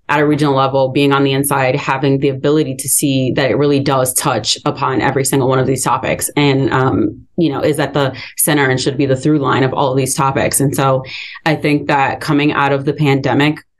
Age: 20-39